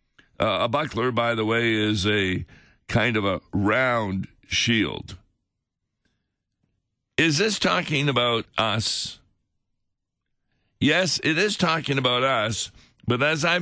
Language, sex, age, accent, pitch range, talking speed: English, male, 50-69, American, 110-140 Hz, 120 wpm